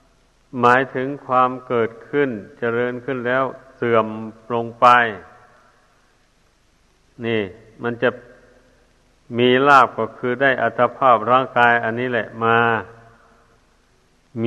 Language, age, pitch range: Thai, 60-79, 115-130 Hz